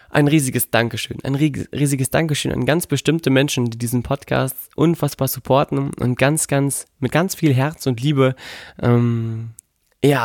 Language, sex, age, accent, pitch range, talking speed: German, male, 20-39, German, 120-140 Hz, 150 wpm